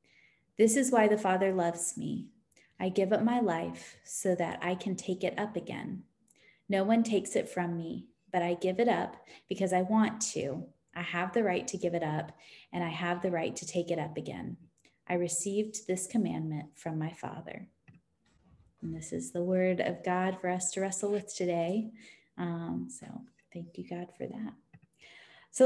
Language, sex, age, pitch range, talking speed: English, female, 20-39, 175-220 Hz, 190 wpm